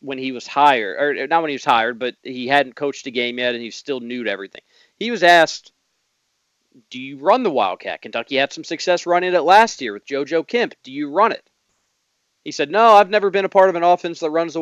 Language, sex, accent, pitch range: English, male, American, 135-195 Hz